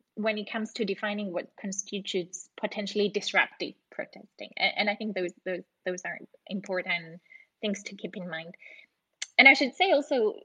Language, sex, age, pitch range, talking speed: English, female, 20-39, 190-245 Hz, 155 wpm